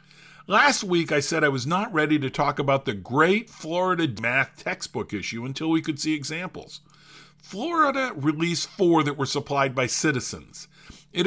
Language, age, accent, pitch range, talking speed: English, 50-69, American, 145-190 Hz, 165 wpm